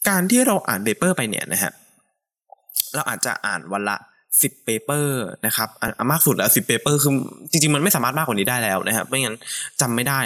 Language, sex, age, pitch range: Thai, male, 20-39, 110-180 Hz